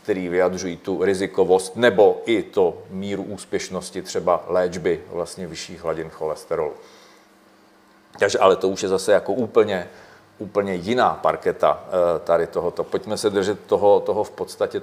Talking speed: 140 wpm